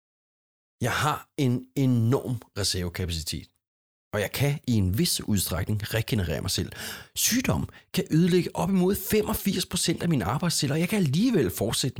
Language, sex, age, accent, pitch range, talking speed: Danish, male, 30-49, native, 105-160 Hz, 145 wpm